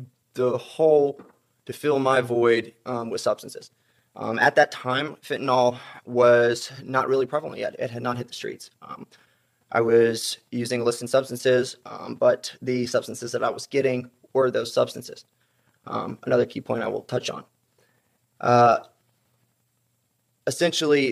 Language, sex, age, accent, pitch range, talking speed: English, male, 20-39, American, 120-130 Hz, 155 wpm